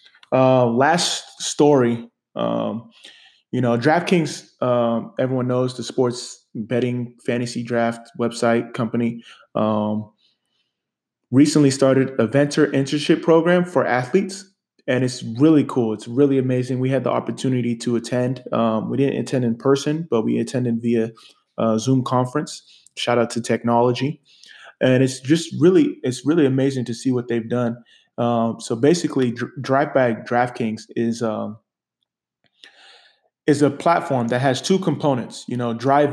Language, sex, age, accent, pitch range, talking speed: English, male, 20-39, American, 120-140 Hz, 145 wpm